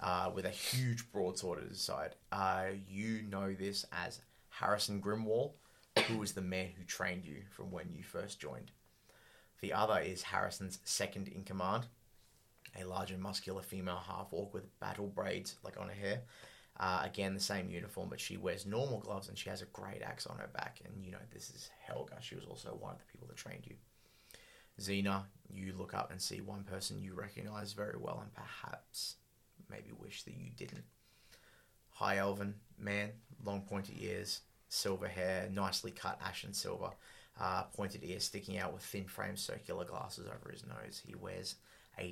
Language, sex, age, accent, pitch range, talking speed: English, male, 20-39, Australian, 95-105 Hz, 185 wpm